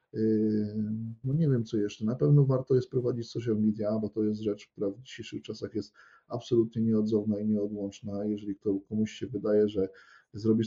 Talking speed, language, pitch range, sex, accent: 170 wpm, Polish, 110-125 Hz, male, native